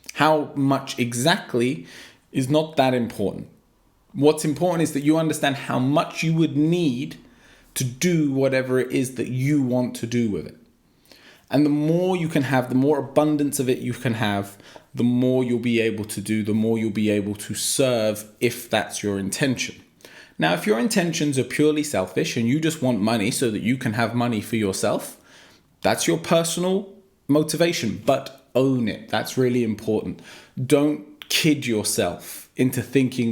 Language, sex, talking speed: English, male, 175 wpm